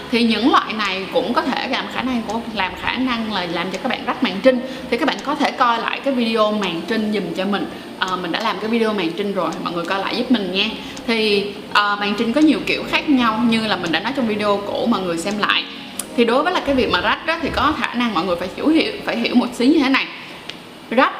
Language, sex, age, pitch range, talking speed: Vietnamese, female, 20-39, 210-270 Hz, 280 wpm